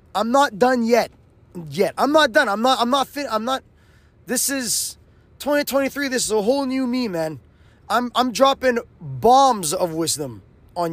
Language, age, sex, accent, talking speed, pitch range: English, 20-39, male, American, 175 wpm, 180-260 Hz